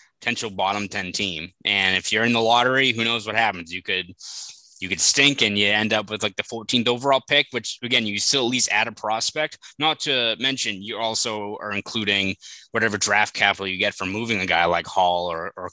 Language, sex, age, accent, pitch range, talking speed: English, male, 20-39, American, 100-120 Hz, 220 wpm